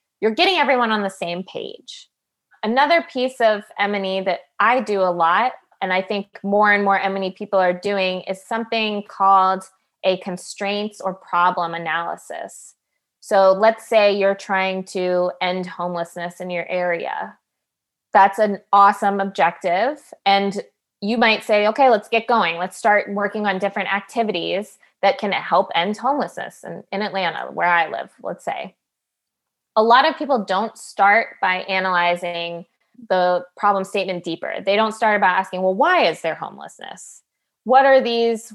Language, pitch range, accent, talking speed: English, 185-220 Hz, American, 160 wpm